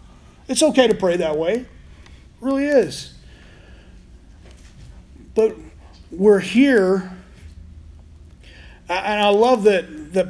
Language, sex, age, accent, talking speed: English, male, 40-59, American, 100 wpm